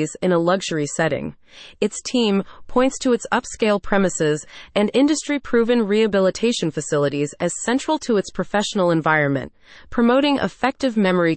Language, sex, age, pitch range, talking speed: English, female, 30-49, 170-230 Hz, 125 wpm